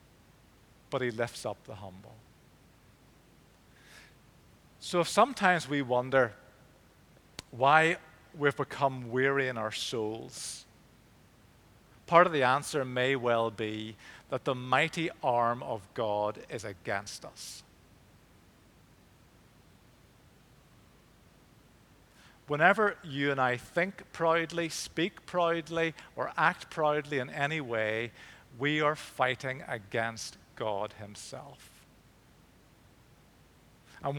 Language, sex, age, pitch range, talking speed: English, male, 50-69, 115-150 Hz, 100 wpm